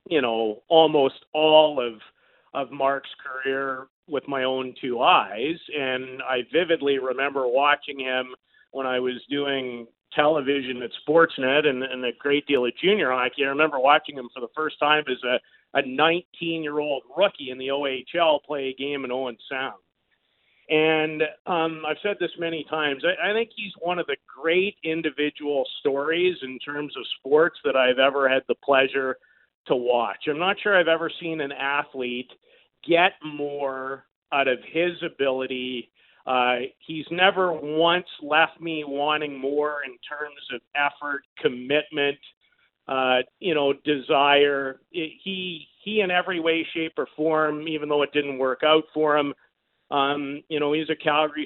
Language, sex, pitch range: English, male, 135-160 Hz